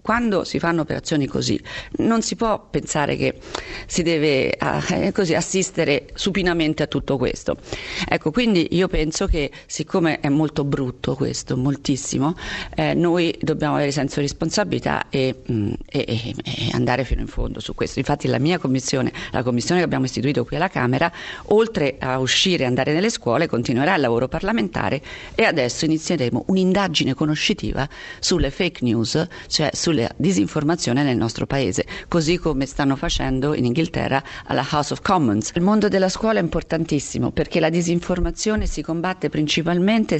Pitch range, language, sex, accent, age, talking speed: 140-185 Hz, Italian, female, native, 40-59, 160 wpm